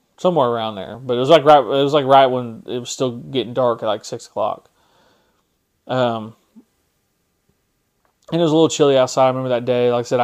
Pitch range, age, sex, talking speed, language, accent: 120-150 Hz, 30-49, male, 215 wpm, English, American